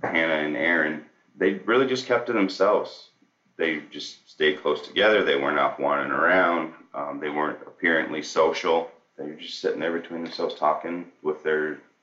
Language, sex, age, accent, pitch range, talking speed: English, male, 30-49, American, 75-85 Hz, 170 wpm